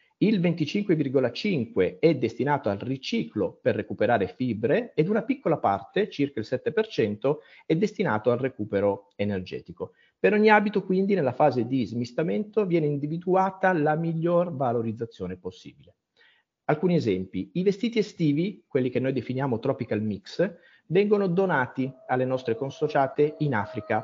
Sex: male